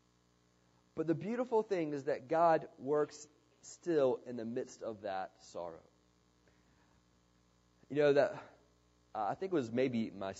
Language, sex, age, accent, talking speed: English, male, 30-49, American, 145 wpm